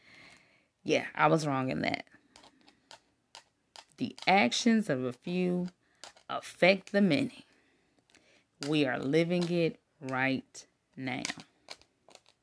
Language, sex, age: English, female, 20-39